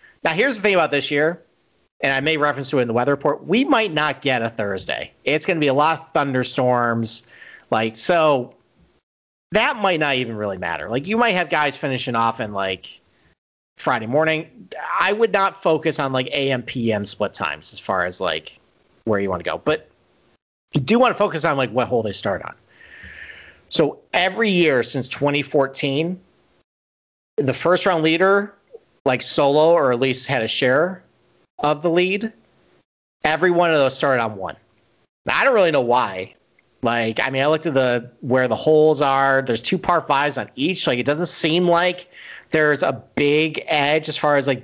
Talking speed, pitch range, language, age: 195 wpm, 120-160 Hz, English, 40-59